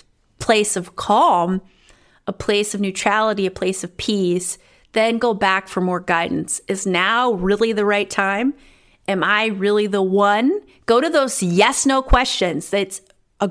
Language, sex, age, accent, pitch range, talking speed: English, female, 30-49, American, 190-230 Hz, 160 wpm